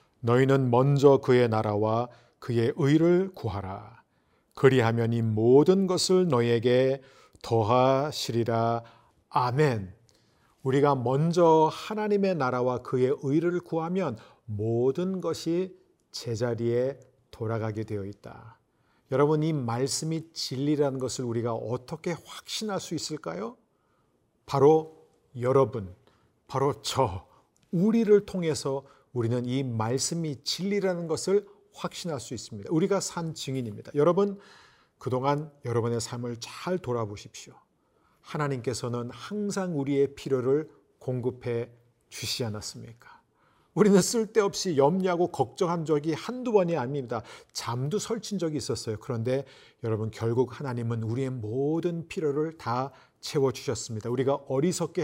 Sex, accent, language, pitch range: male, native, Korean, 120-165 Hz